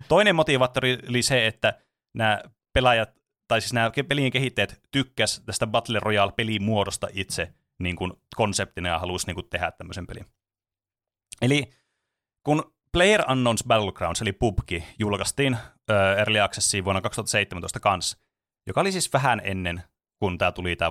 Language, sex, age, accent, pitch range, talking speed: Finnish, male, 30-49, native, 100-130 Hz, 145 wpm